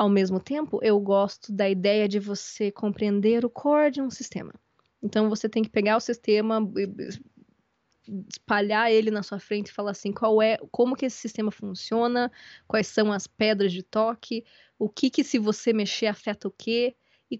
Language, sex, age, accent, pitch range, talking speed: Portuguese, female, 20-39, Brazilian, 205-240 Hz, 185 wpm